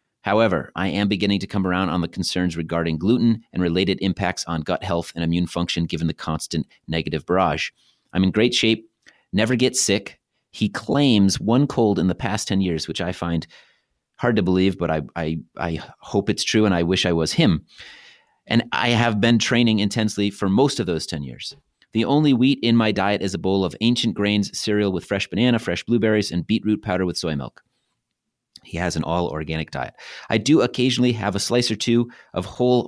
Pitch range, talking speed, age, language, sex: 85-115 Hz, 205 wpm, 30-49, English, male